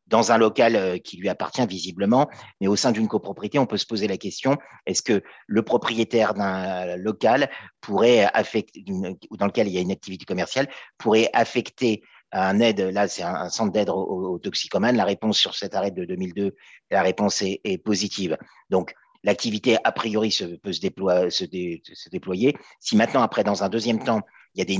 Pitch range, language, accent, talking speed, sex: 95-115 Hz, French, French, 190 wpm, male